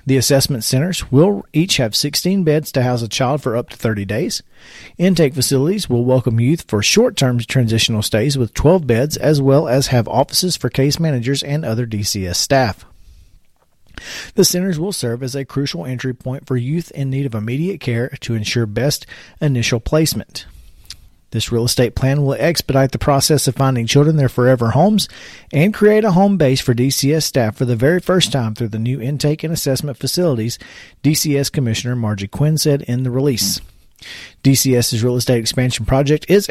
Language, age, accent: English, 40-59, American